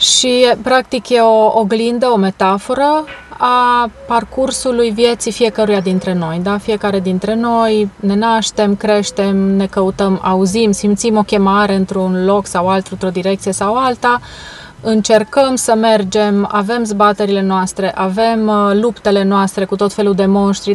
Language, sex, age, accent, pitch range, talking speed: Romanian, female, 30-49, native, 195-225 Hz, 140 wpm